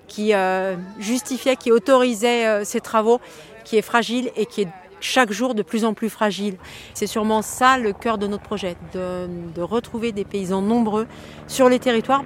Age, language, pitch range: 40-59, French, 190-235 Hz